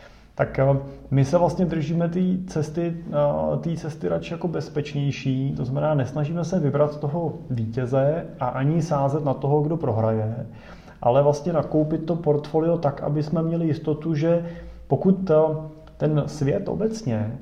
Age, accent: 30-49, native